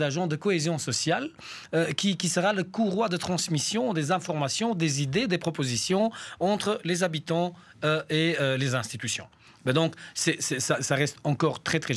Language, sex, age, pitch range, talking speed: French, male, 40-59, 130-175 Hz, 180 wpm